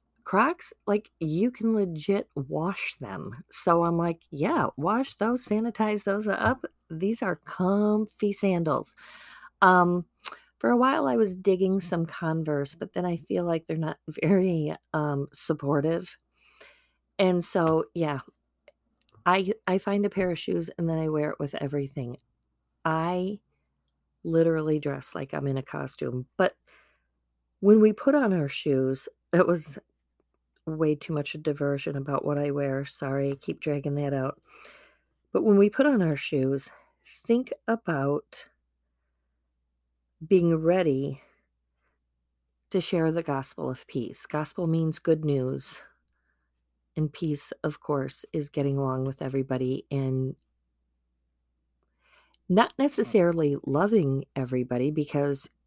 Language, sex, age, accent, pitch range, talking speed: English, female, 40-59, American, 135-185 Hz, 135 wpm